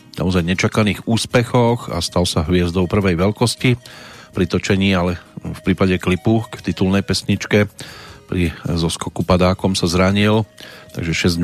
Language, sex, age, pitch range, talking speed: Slovak, male, 40-59, 90-105 Hz, 135 wpm